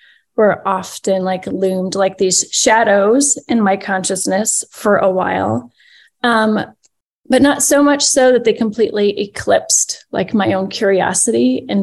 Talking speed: 140 wpm